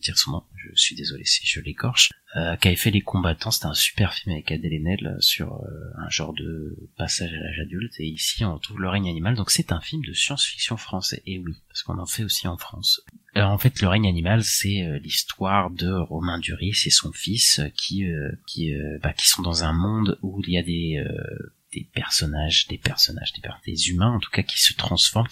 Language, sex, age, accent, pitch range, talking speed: French, male, 30-49, French, 80-100 Hz, 230 wpm